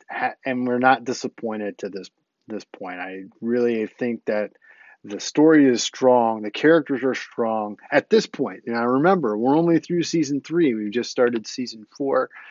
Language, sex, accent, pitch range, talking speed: English, male, American, 120-155 Hz, 180 wpm